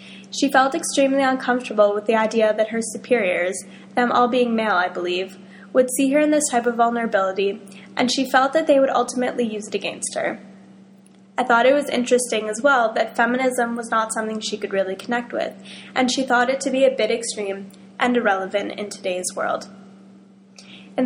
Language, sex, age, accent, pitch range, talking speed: English, female, 10-29, American, 200-260 Hz, 190 wpm